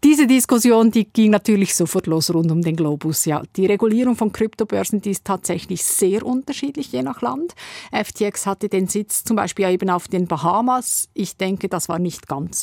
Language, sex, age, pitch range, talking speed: German, female, 50-69, 185-220 Hz, 190 wpm